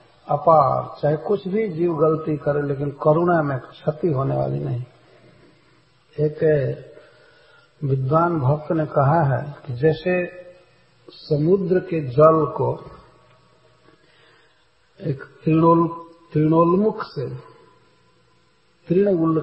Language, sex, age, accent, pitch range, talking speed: English, male, 60-79, Indian, 135-175 Hz, 95 wpm